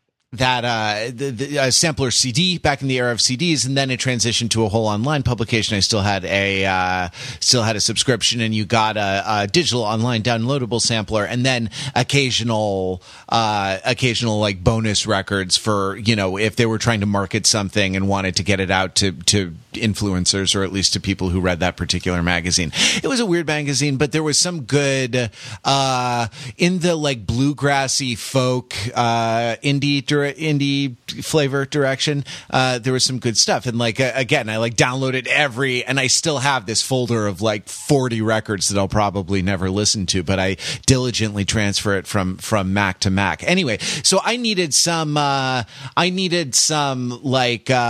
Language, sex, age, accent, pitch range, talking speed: English, male, 30-49, American, 105-135 Hz, 180 wpm